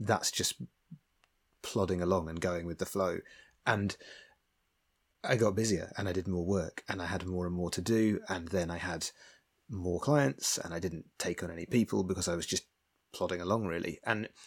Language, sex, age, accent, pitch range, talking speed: English, male, 30-49, British, 90-105 Hz, 195 wpm